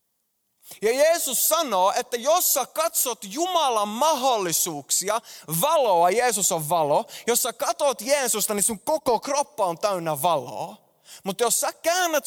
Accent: native